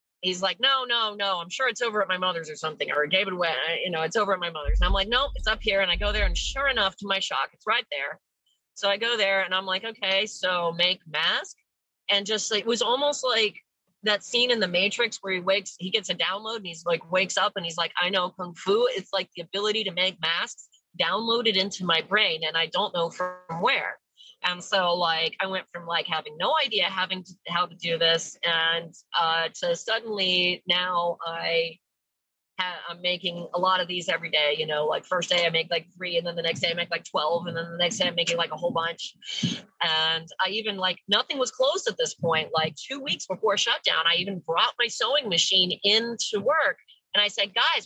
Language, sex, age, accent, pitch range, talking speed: English, female, 30-49, American, 170-215 Hz, 235 wpm